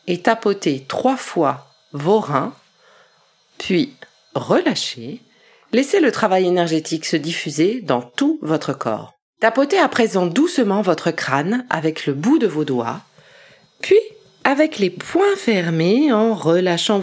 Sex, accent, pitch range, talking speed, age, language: female, French, 175-250 Hz, 130 wpm, 40-59, French